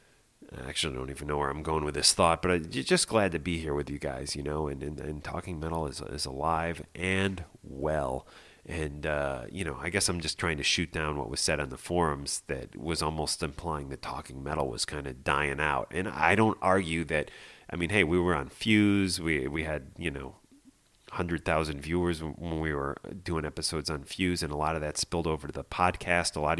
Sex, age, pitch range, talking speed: male, 30-49, 75-90 Hz, 230 wpm